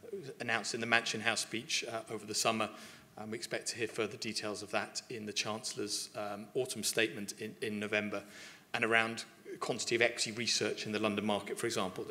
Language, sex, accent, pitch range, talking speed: English, male, British, 110-150 Hz, 200 wpm